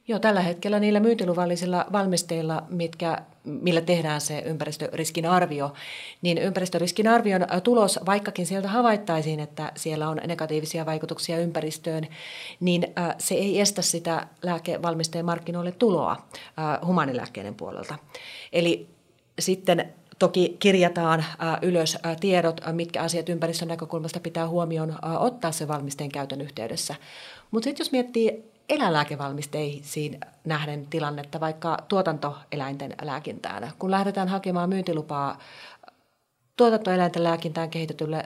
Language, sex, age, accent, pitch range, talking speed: Finnish, female, 30-49, native, 155-180 Hz, 105 wpm